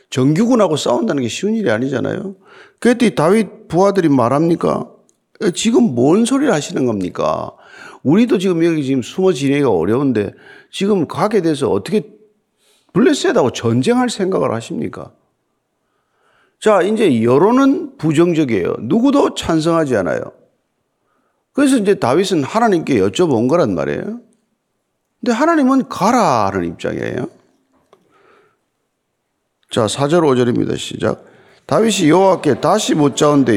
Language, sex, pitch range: Korean, male, 155-220 Hz